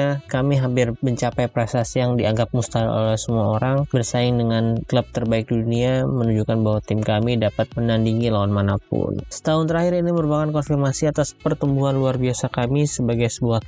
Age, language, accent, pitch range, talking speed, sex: 20-39, Indonesian, native, 115-130 Hz, 160 wpm, male